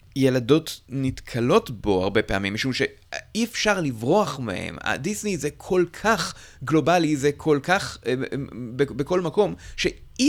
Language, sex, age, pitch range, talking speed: Hebrew, male, 30-49, 110-155 Hz, 120 wpm